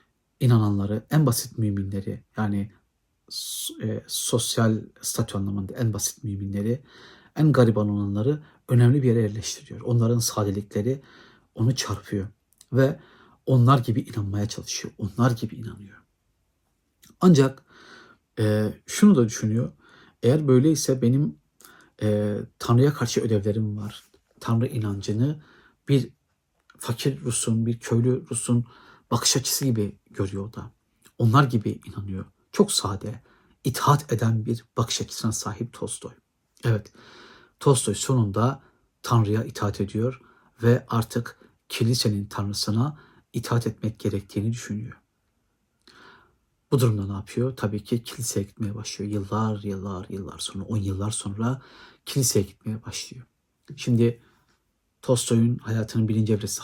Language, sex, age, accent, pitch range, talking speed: Turkish, male, 60-79, native, 105-120 Hz, 115 wpm